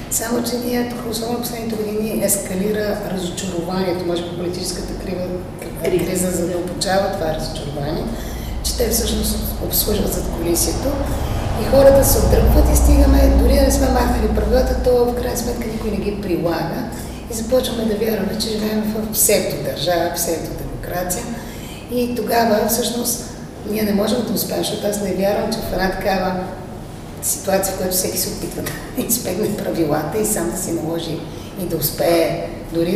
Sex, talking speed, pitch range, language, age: female, 170 wpm, 180-225 Hz, Bulgarian, 30-49